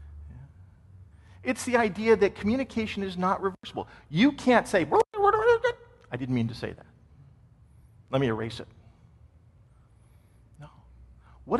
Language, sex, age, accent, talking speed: English, male, 40-59, American, 120 wpm